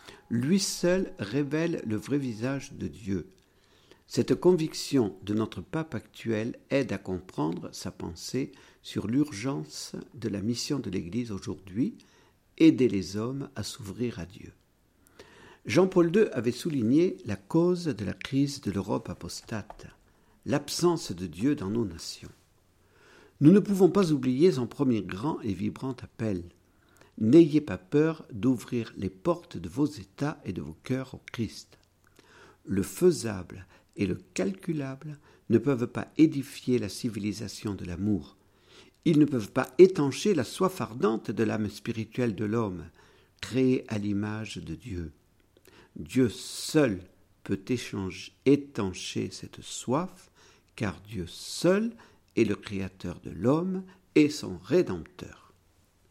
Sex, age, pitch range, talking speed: male, 50-69, 100-145 Hz, 135 wpm